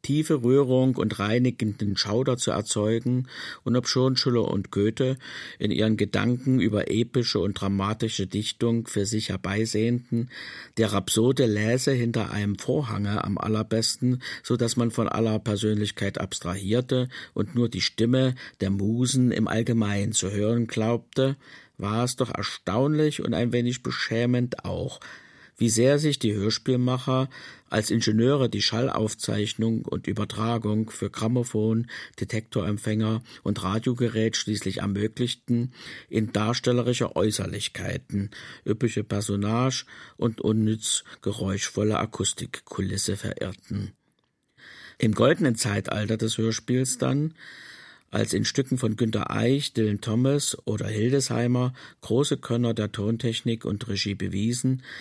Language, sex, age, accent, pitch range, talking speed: German, male, 50-69, German, 105-125 Hz, 120 wpm